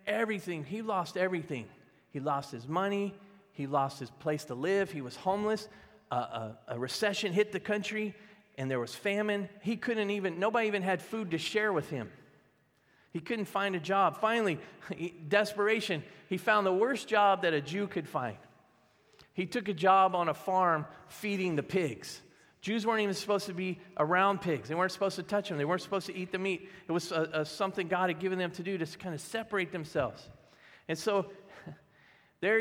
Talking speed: 190 wpm